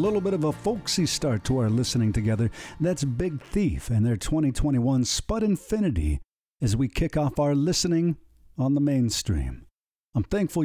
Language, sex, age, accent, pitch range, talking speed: English, male, 60-79, American, 105-150 Hz, 165 wpm